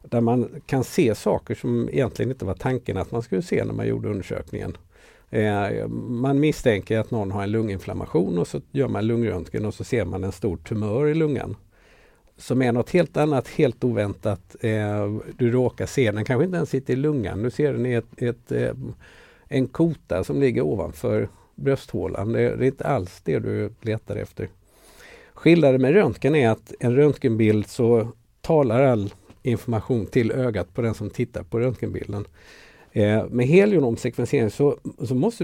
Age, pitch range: 50-69, 110-135 Hz